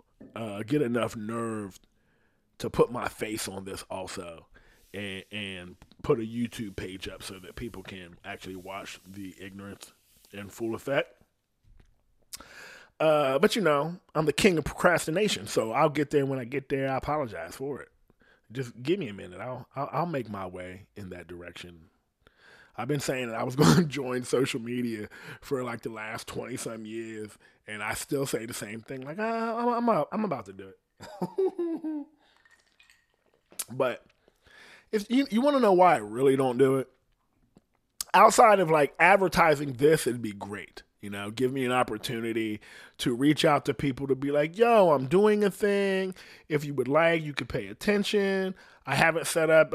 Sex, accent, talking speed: male, American, 175 wpm